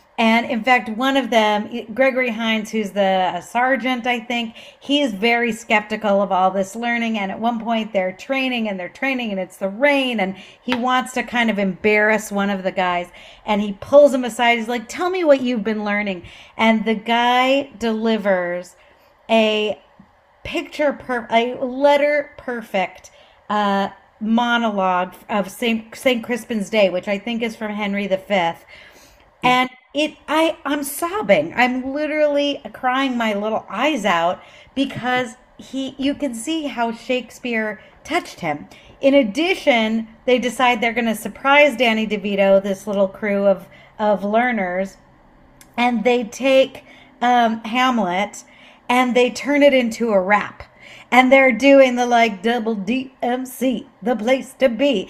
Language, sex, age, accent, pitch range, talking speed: English, female, 40-59, American, 210-260 Hz, 155 wpm